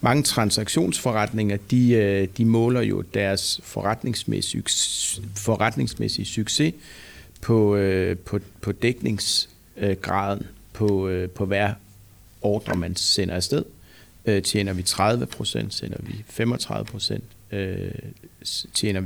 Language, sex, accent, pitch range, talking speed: Danish, male, native, 95-115 Hz, 95 wpm